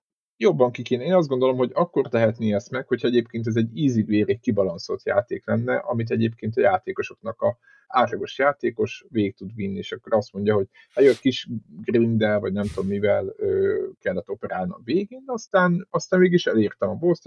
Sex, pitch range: male, 110-150 Hz